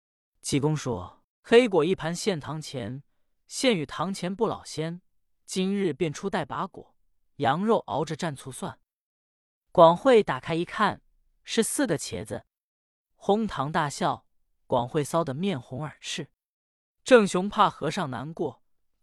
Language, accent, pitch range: Chinese, native, 135-205 Hz